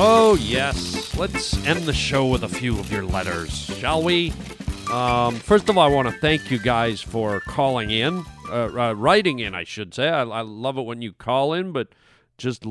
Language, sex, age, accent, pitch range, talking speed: English, male, 40-59, American, 120-160 Hz, 210 wpm